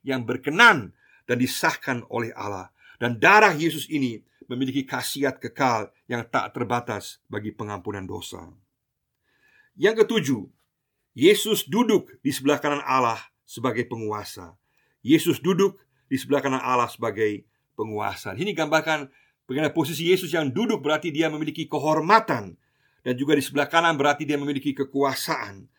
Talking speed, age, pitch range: 135 wpm, 50-69, 120-155 Hz